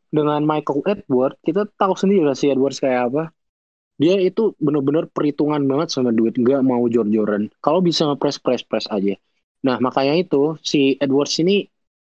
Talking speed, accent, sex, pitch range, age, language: 165 wpm, native, male, 120-155 Hz, 20-39, Indonesian